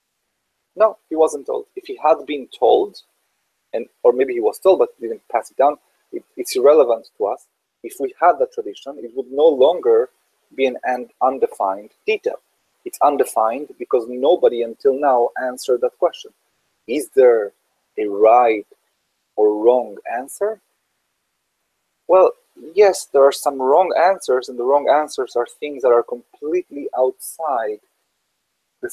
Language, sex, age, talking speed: English, male, 30-49, 150 wpm